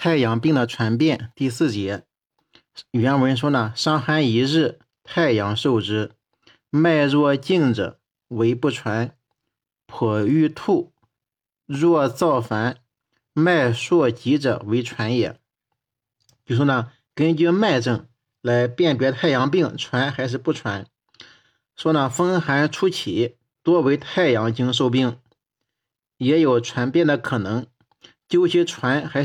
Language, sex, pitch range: Chinese, male, 120-155 Hz